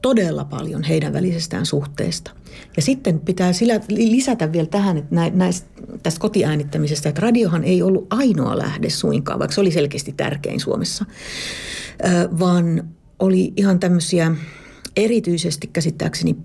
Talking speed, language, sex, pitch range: 125 wpm, Finnish, female, 150-195 Hz